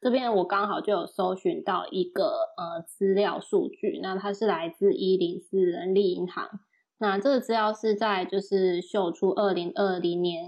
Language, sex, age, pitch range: Chinese, female, 20-39, 190-230 Hz